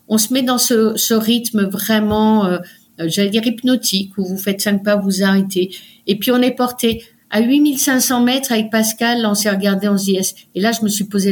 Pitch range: 185-220 Hz